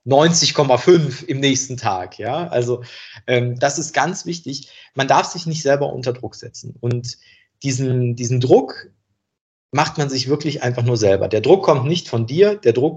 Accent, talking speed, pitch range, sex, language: German, 170 wpm, 120-165 Hz, male, German